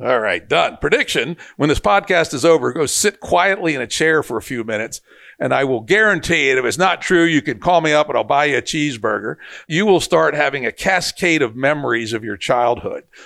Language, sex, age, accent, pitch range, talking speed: English, male, 60-79, American, 125-165 Hz, 225 wpm